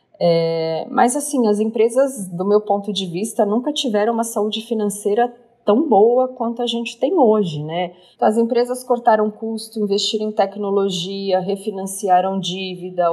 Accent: Brazilian